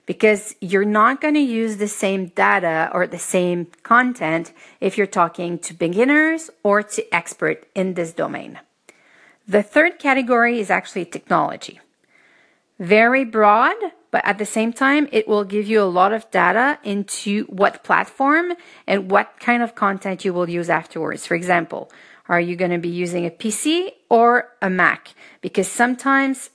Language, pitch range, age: English, 185-255 Hz, 40-59